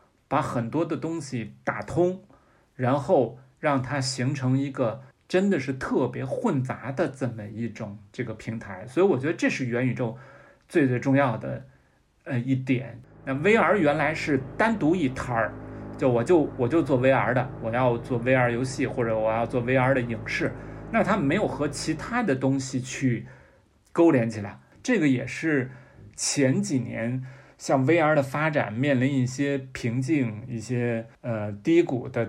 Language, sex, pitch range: Chinese, male, 120-145 Hz